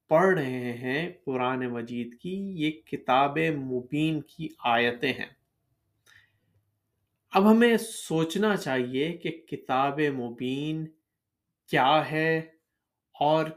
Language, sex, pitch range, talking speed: Urdu, male, 130-165 Hz, 95 wpm